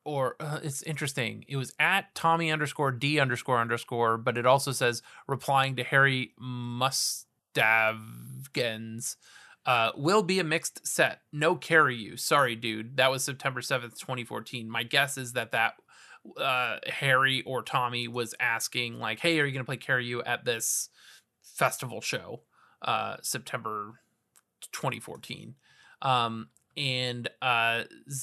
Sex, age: male, 20-39